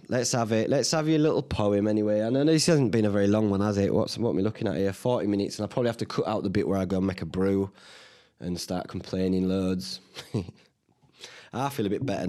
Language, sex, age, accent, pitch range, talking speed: English, male, 20-39, British, 95-115 Hz, 260 wpm